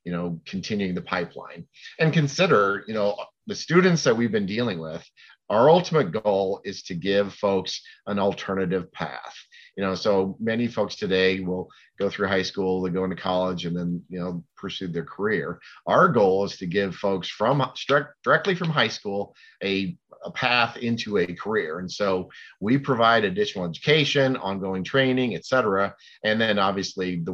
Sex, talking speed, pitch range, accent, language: male, 175 wpm, 95-115 Hz, American, English